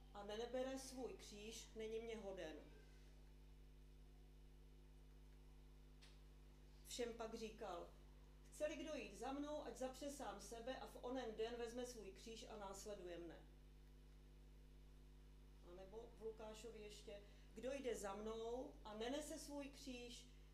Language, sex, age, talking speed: Czech, female, 40-59, 120 wpm